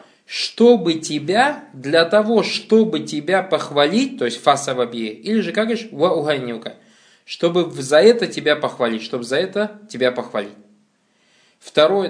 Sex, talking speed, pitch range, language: male, 130 wpm, 135-215 Hz, Russian